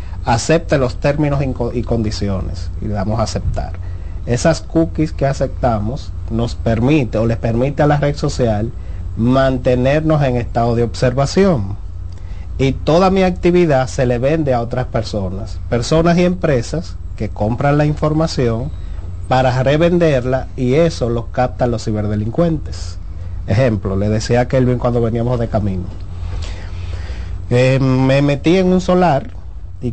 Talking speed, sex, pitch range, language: 135 wpm, male, 105-145 Hz, Spanish